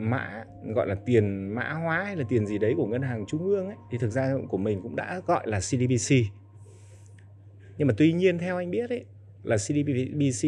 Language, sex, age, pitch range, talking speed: Vietnamese, male, 20-39, 100-135 Hz, 210 wpm